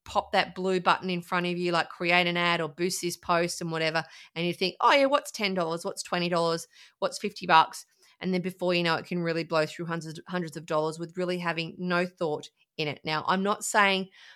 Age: 30-49